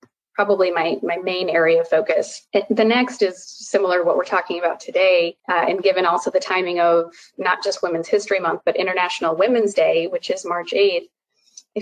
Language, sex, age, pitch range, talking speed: English, female, 30-49, 175-240 Hz, 195 wpm